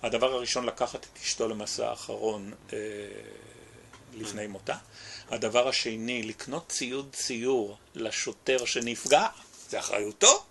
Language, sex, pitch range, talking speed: Hebrew, male, 105-130 Hz, 110 wpm